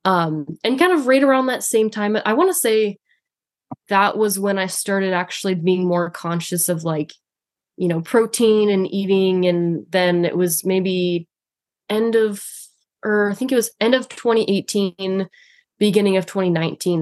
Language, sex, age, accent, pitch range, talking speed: English, female, 20-39, American, 170-205 Hz, 165 wpm